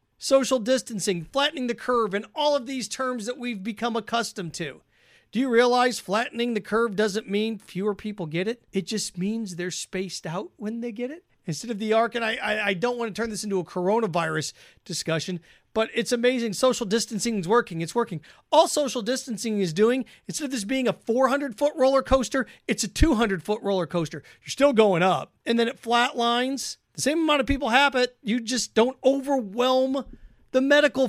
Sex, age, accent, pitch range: male, 40-59, American, 195-255 Hz